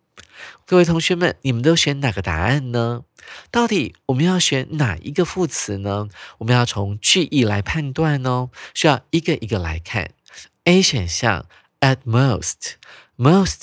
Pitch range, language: 105-160 Hz, Chinese